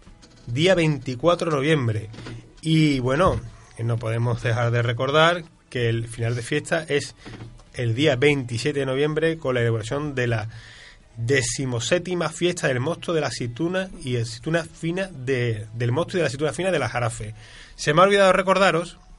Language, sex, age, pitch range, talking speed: Spanish, male, 30-49, 120-170 Hz, 170 wpm